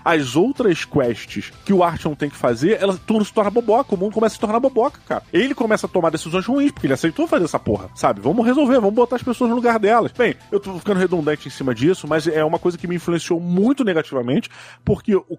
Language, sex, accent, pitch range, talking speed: Portuguese, male, Brazilian, 140-215 Hz, 240 wpm